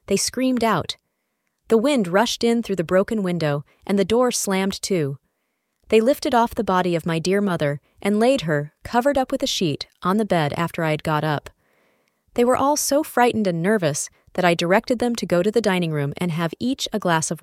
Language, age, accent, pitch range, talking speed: English, 30-49, American, 160-235 Hz, 220 wpm